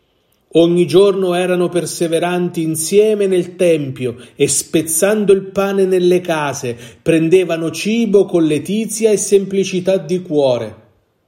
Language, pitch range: Italian, 120-175 Hz